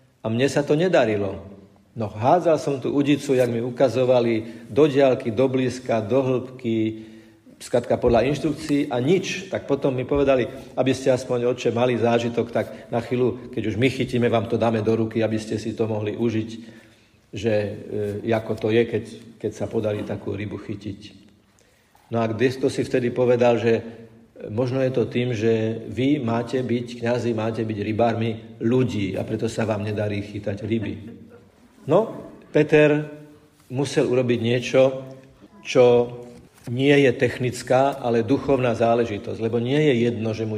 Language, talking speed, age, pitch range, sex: Slovak, 160 wpm, 50-69, 110-130 Hz, male